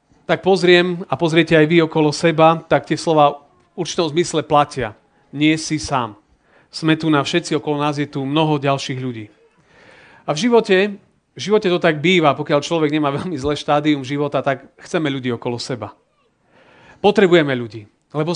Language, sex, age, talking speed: Slovak, male, 40-59, 170 wpm